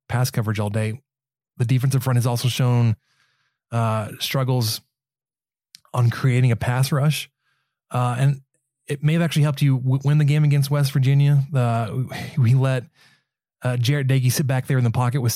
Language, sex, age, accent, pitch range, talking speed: English, male, 20-39, American, 115-135 Hz, 180 wpm